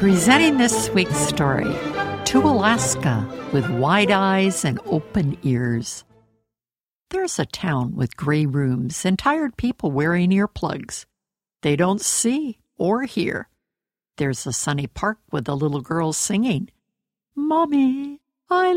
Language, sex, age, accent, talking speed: English, female, 60-79, American, 125 wpm